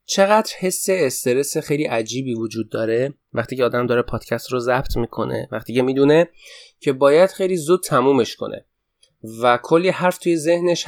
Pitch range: 115-165 Hz